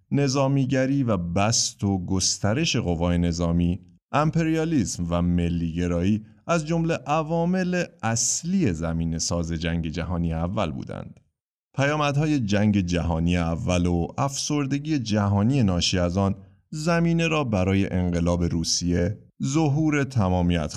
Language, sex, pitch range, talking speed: Persian, male, 85-125 Hz, 110 wpm